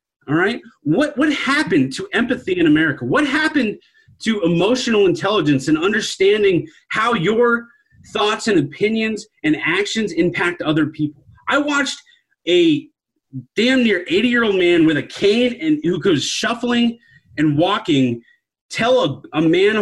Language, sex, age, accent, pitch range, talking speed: English, male, 30-49, American, 175-275 Hz, 145 wpm